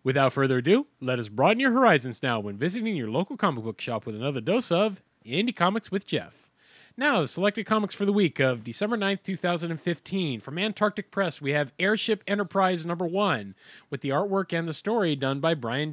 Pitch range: 135-195 Hz